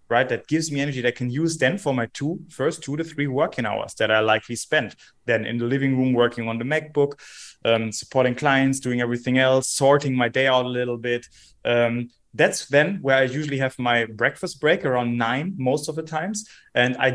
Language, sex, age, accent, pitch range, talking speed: English, male, 20-39, German, 120-145 Hz, 220 wpm